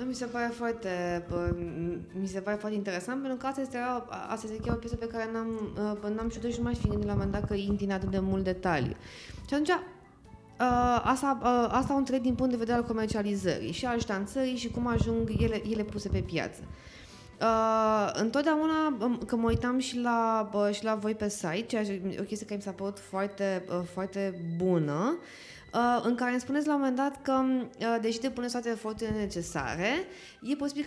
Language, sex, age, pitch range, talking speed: Romanian, female, 20-39, 190-240 Hz, 190 wpm